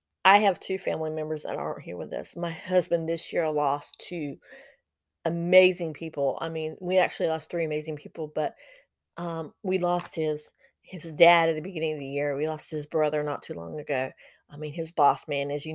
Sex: female